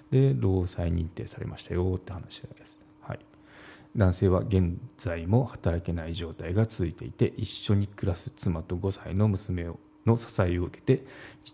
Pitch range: 90-125 Hz